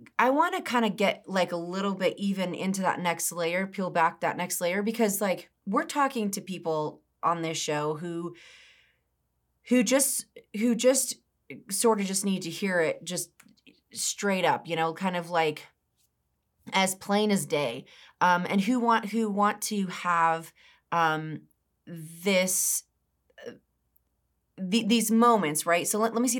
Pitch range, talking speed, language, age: 170-225 Hz, 165 wpm, English, 30-49